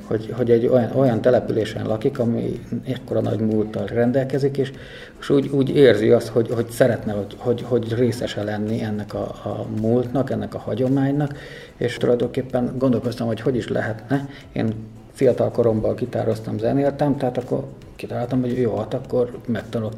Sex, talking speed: male, 160 wpm